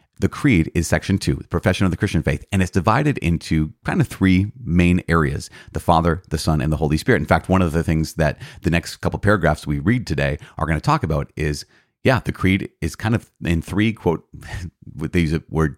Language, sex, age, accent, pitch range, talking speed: English, male, 30-49, American, 75-100 Hz, 230 wpm